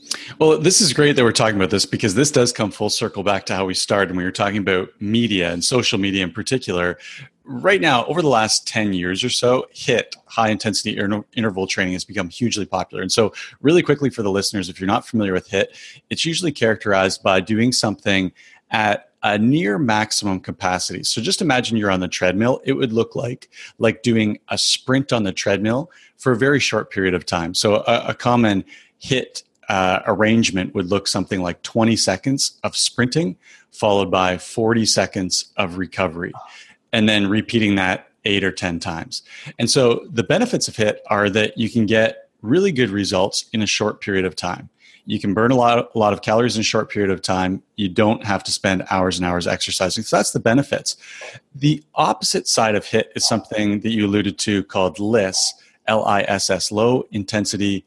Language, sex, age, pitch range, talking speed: English, male, 30-49, 95-115 Hz, 205 wpm